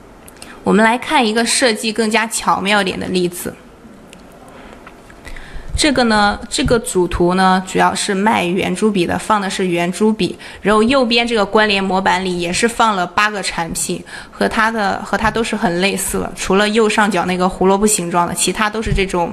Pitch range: 185-225 Hz